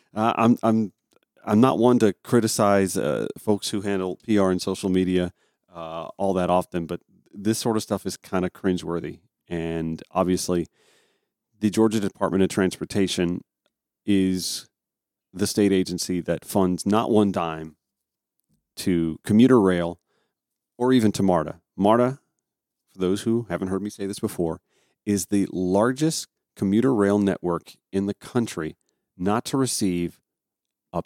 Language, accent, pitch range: English, American, 90-110 Hz